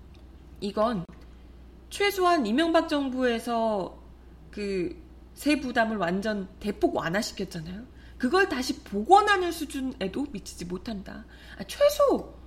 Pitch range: 185-290 Hz